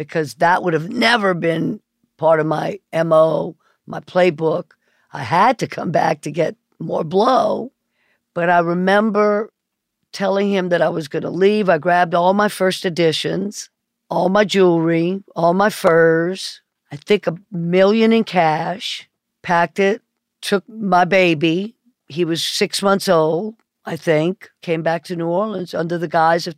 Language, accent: English, American